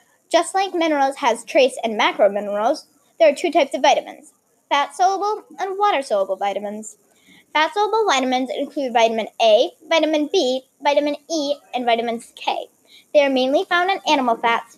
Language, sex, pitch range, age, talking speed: English, female, 235-325 Hz, 10-29, 150 wpm